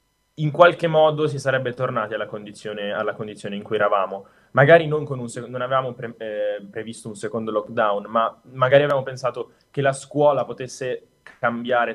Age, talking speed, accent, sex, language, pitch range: 10-29, 170 wpm, native, male, Italian, 110-140 Hz